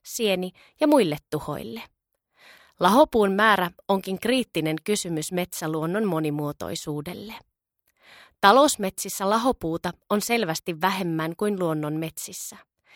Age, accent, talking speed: 20-39, native, 90 wpm